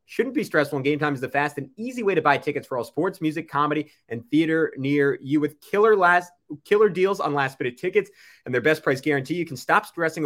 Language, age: English, 20-39